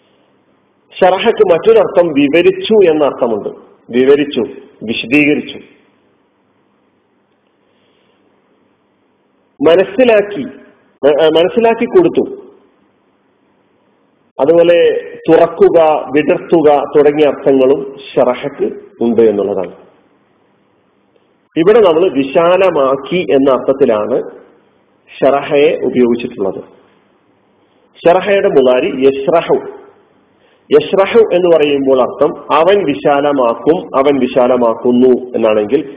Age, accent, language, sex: 40-59, native, Malayalam, male